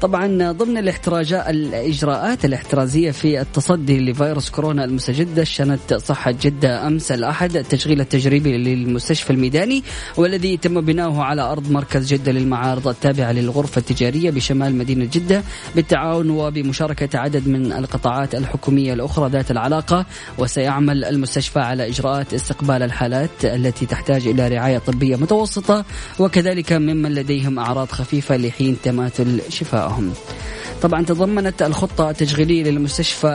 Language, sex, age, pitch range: Arabic, female, 20-39, 135-170 Hz